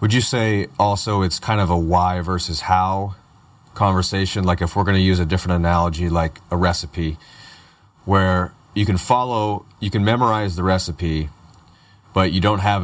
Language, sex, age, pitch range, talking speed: English, male, 30-49, 90-105 Hz, 175 wpm